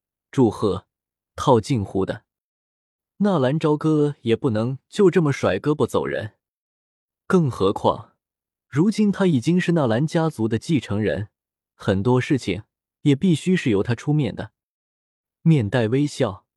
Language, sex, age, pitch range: Chinese, male, 20-39, 105-155 Hz